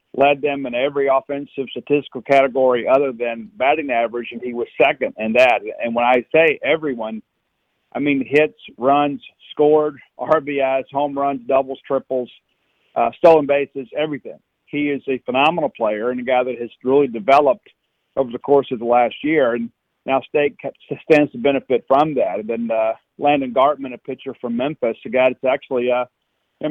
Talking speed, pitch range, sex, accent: 175 wpm, 125-145 Hz, male, American